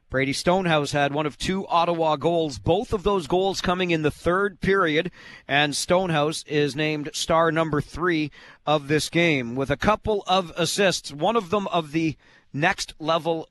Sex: male